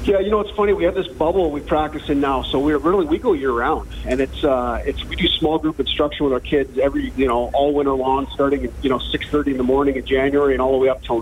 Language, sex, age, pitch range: English, male, 40-59, 120-145 Hz